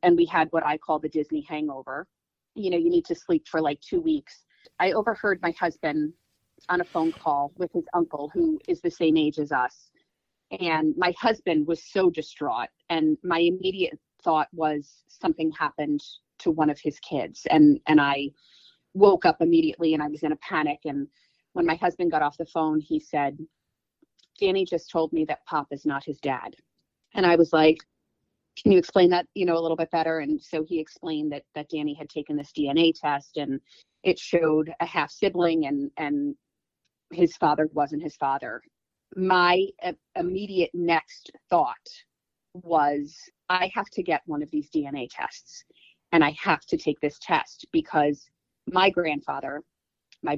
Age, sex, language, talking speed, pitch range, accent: 30-49, female, English, 180 wpm, 150-190 Hz, American